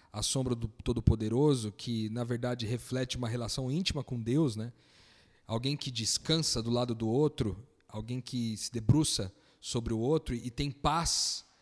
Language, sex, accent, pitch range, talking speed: Portuguese, male, Brazilian, 120-150 Hz, 160 wpm